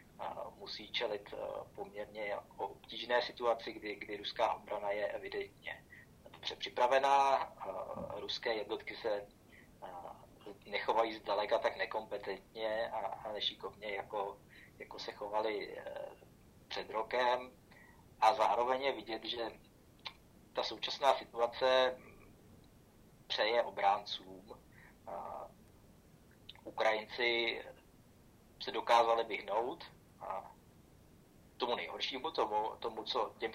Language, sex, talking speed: Czech, male, 85 wpm